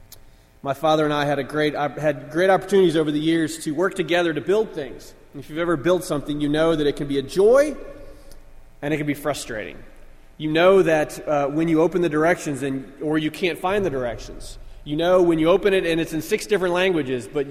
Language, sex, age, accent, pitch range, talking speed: English, male, 30-49, American, 145-180 Hz, 230 wpm